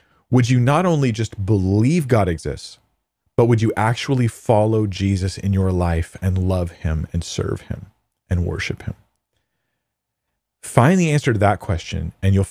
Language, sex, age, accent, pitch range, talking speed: English, male, 40-59, American, 95-125 Hz, 165 wpm